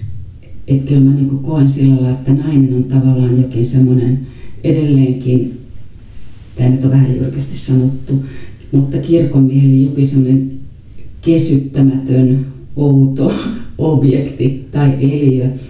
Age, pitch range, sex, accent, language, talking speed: 40-59, 115-135 Hz, female, native, Finnish, 110 wpm